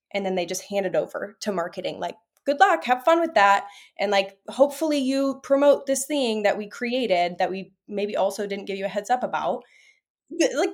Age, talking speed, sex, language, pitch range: 20-39, 210 wpm, female, English, 185-235 Hz